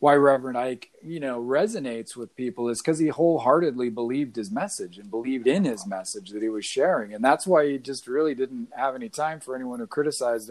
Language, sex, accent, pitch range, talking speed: English, male, American, 125-160 Hz, 215 wpm